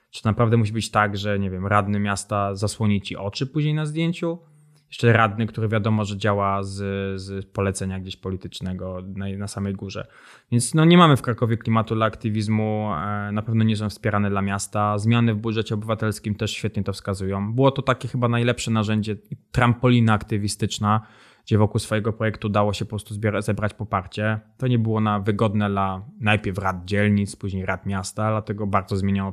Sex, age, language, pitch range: male, 20-39, Polish, 100-115 Hz